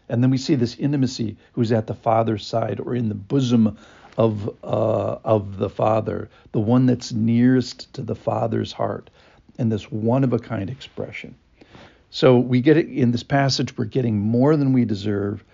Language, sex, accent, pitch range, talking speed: English, male, American, 110-130 Hz, 180 wpm